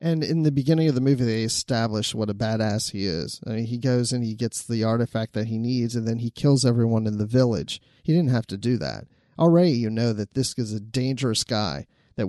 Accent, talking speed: American, 245 wpm